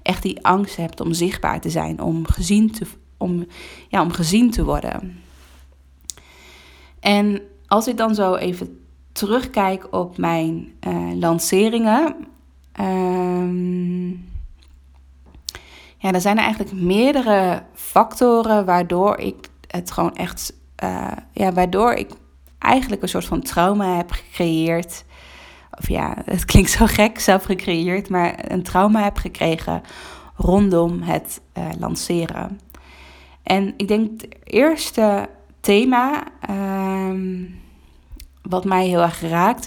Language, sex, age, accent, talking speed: Dutch, female, 20-39, Dutch, 115 wpm